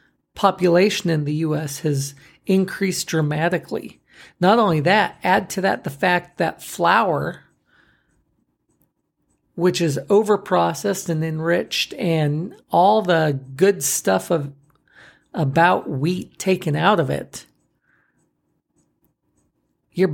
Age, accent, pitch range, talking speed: 40-59, American, 155-195 Hz, 105 wpm